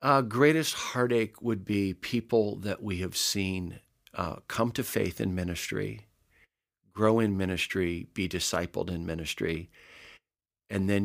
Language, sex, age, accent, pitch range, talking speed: English, male, 50-69, American, 85-110 Hz, 135 wpm